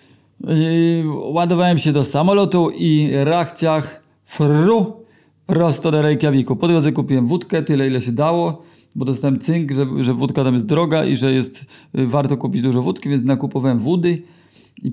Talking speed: 155 wpm